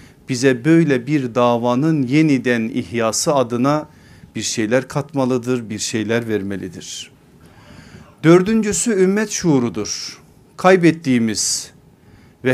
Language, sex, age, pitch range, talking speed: Turkish, male, 40-59, 125-150 Hz, 85 wpm